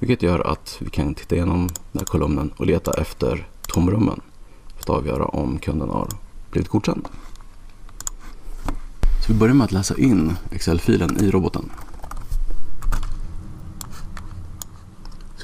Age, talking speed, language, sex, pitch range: 40-59, 130 wpm, Swedish, male, 85-105 Hz